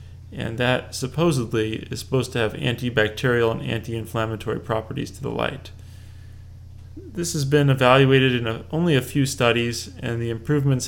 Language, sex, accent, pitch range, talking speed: English, male, American, 100-140 Hz, 155 wpm